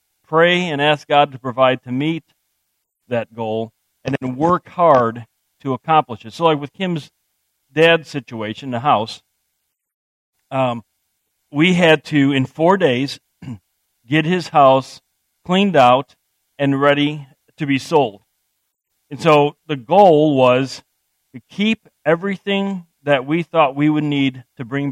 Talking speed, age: 140 wpm, 40-59